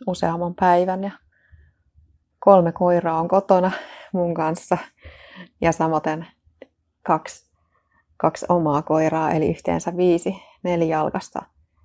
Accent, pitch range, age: native, 155-180 Hz, 30-49